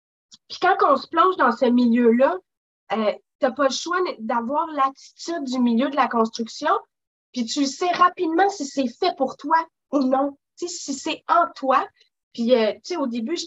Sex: female